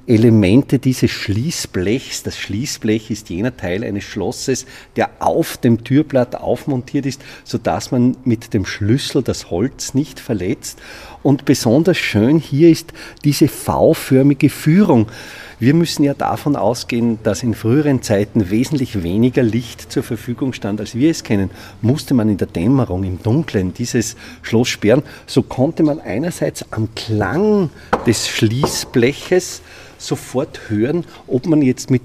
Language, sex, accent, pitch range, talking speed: German, male, Austrian, 115-150 Hz, 145 wpm